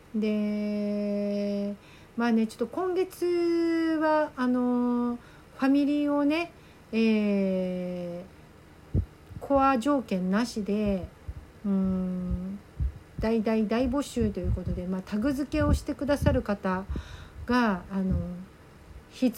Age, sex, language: 50-69, female, Japanese